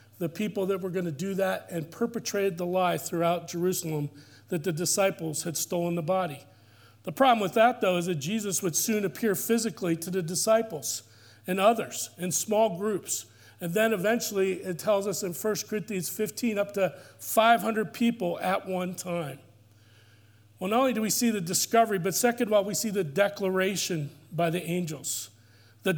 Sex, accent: male, American